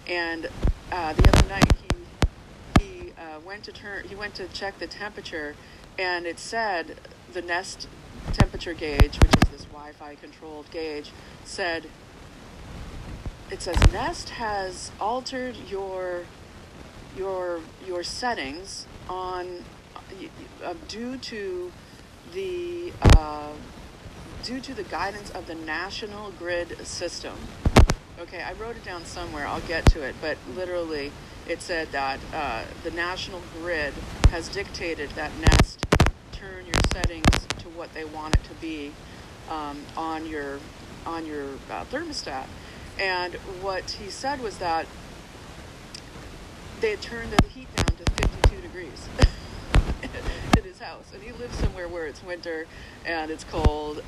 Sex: female